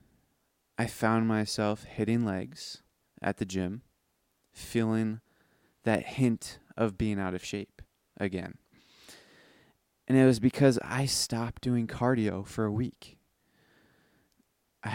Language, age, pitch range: English, 20-39, 100-115 Hz